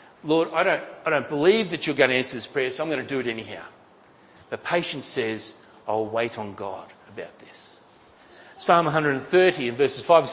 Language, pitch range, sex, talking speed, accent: English, 125-175 Hz, male, 205 wpm, Australian